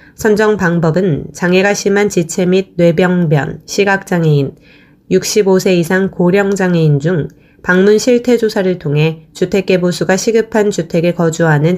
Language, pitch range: Korean, 165-205 Hz